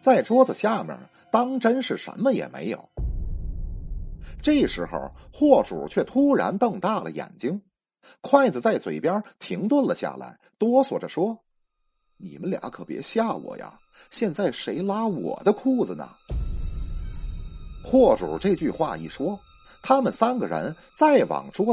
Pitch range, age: 180-265 Hz, 30-49